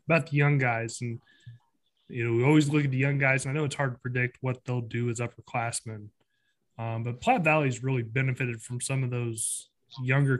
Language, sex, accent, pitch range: English, male, American, 115-140 Hz